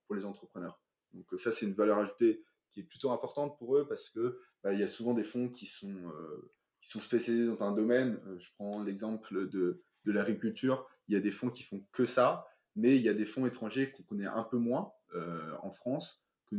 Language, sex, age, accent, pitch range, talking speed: French, male, 20-39, French, 105-130 Hz, 230 wpm